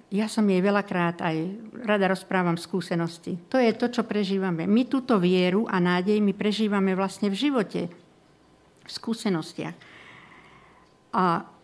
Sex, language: female, Slovak